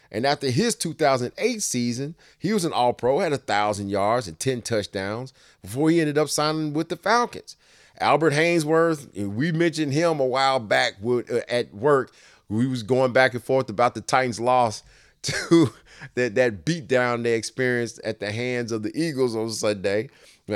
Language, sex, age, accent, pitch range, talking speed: English, male, 30-49, American, 105-130 Hz, 165 wpm